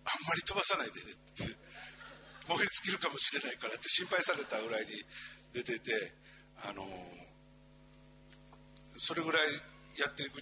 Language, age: Japanese, 60-79